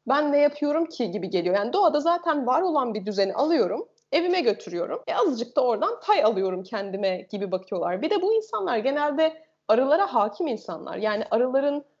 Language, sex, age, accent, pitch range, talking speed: Turkish, female, 30-49, native, 235-320 Hz, 175 wpm